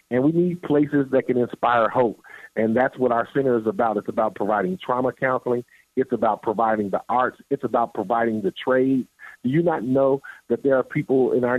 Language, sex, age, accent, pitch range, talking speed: English, male, 50-69, American, 115-135 Hz, 205 wpm